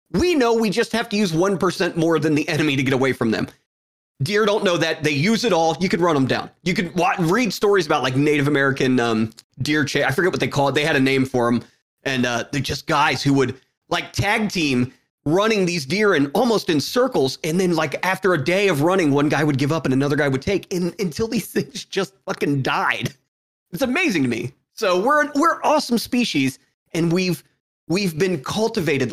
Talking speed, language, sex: 225 wpm, English, male